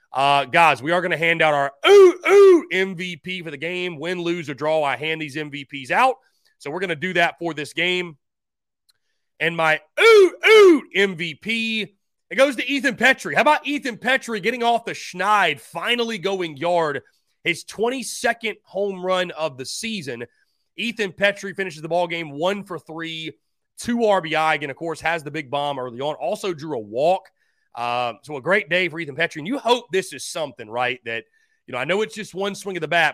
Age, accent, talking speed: 30-49, American, 205 wpm